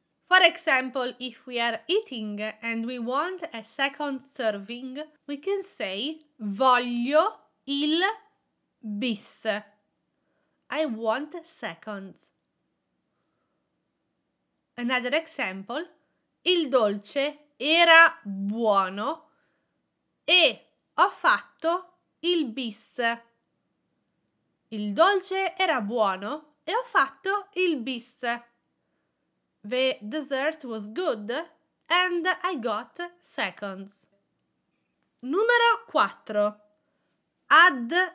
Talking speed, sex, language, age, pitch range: 80 wpm, female, English, 30-49, 225-320 Hz